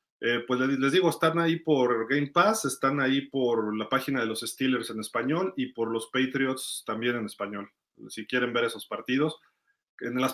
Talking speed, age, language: 190 wpm, 30-49, Spanish